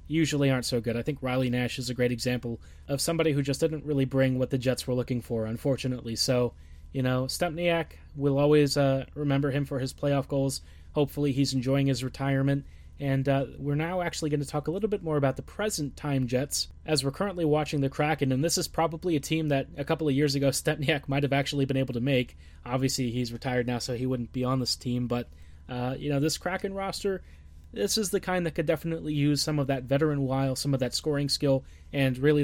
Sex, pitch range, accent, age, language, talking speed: male, 130-155 Hz, American, 20-39, English, 230 wpm